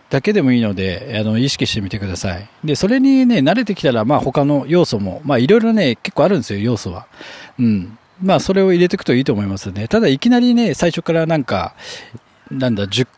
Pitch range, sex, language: 110-150 Hz, male, Japanese